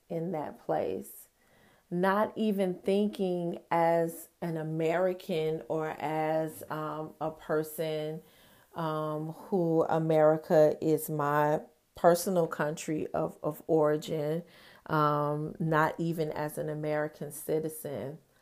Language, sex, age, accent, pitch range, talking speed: English, female, 40-59, American, 155-180 Hz, 100 wpm